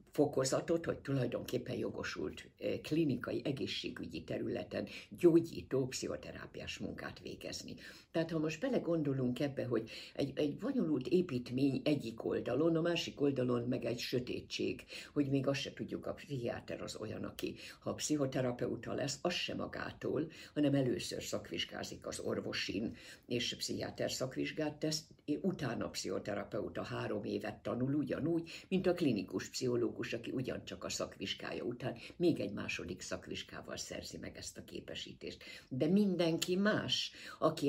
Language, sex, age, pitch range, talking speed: Hungarian, female, 60-79, 130-165 Hz, 135 wpm